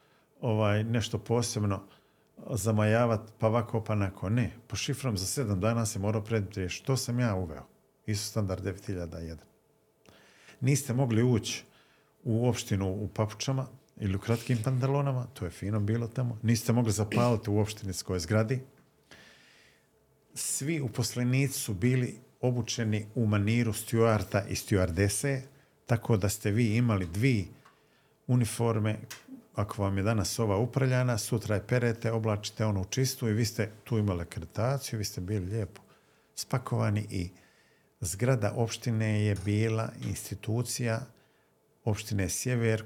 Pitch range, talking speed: 105-125 Hz, 135 wpm